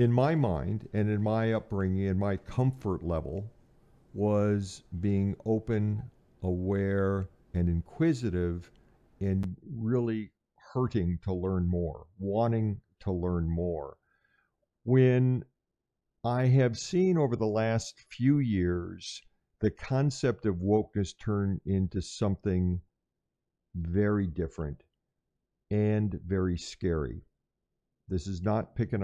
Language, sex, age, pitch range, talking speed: English, male, 50-69, 90-110 Hz, 105 wpm